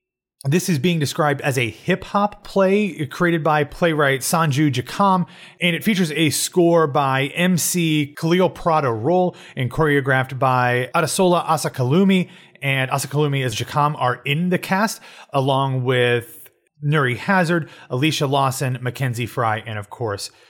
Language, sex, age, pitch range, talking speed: English, male, 30-49, 130-165 Hz, 140 wpm